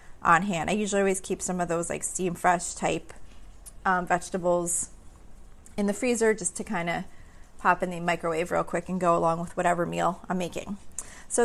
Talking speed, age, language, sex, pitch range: 195 wpm, 30-49, English, female, 190-240 Hz